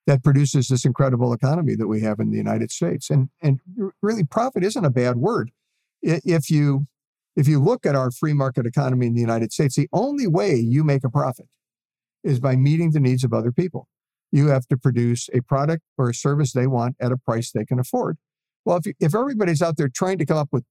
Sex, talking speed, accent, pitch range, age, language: male, 225 wpm, American, 130-170 Hz, 50-69, English